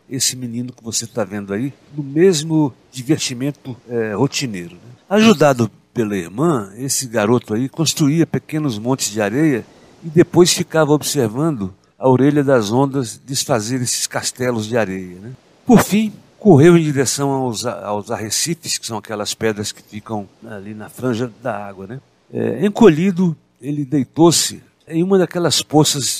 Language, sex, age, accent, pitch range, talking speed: Portuguese, male, 60-79, Brazilian, 115-150 Hz, 150 wpm